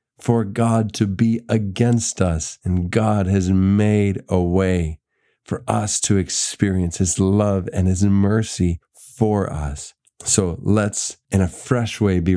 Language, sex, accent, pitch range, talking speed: English, male, American, 100-125 Hz, 145 wpm